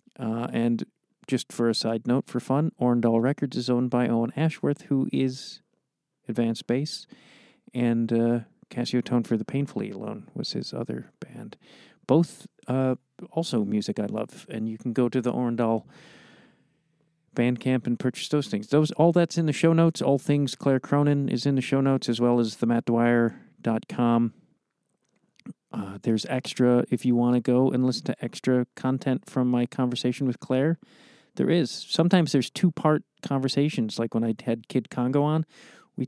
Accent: American